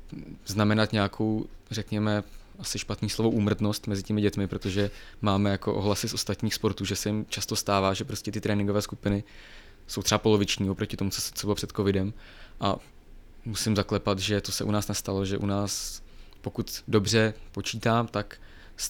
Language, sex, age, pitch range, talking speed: Czech, male, 20-39, 100-105 Hz, 170 wpm